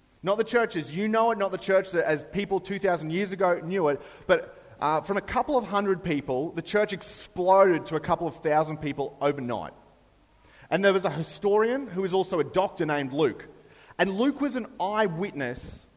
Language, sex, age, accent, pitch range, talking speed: English, male, 30-49, Australian, 165-220 Hz, 190 wpm